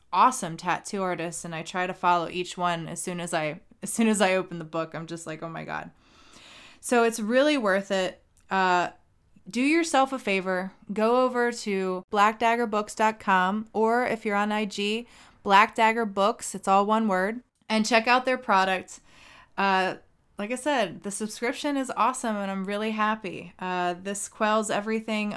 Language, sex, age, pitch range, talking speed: English, female, 20-39, 185-220 Hz, 170 wpm